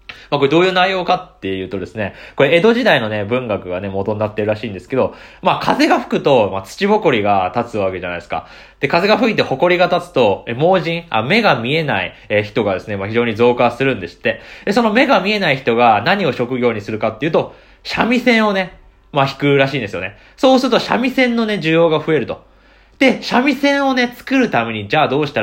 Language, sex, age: Japanese, male, 20-39